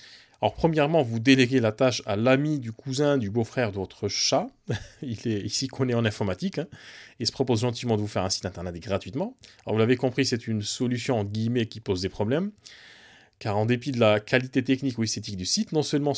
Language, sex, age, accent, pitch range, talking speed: French, male, 30-49, French, 105-130 Hz, 225 wpm